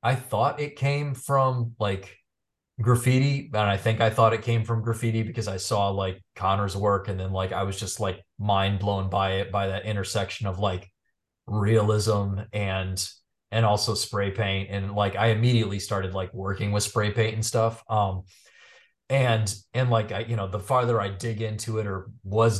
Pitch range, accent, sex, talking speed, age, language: 95-115 Hz, American, male, 190 wpm, 30-49, English